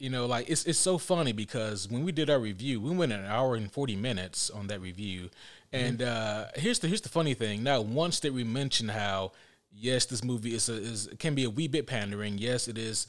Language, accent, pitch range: English, American, 100-130 Hz